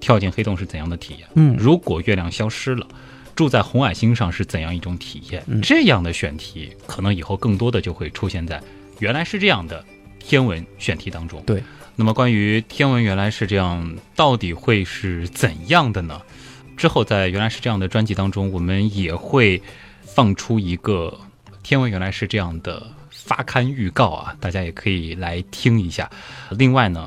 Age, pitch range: 20-39, 90-115 Hz